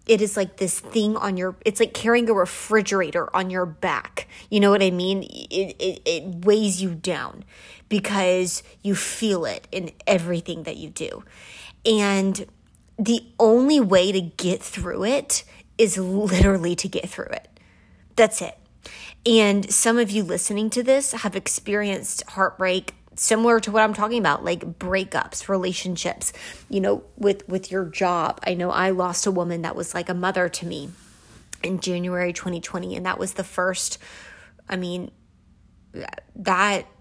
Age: 20-39